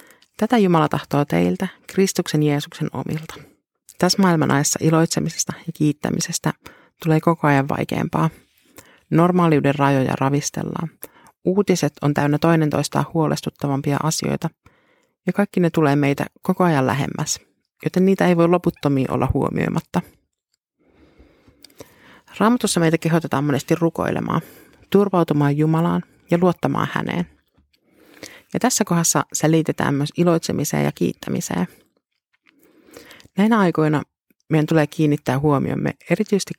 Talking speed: 110 wpm